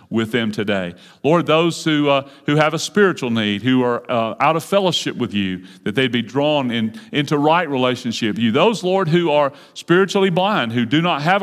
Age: 40-59